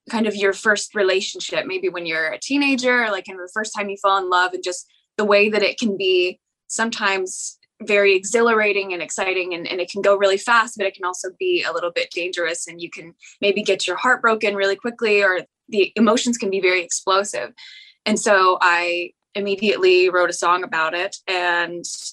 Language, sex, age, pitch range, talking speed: English, female, 10-29, 185-215 Hz, 200 wpm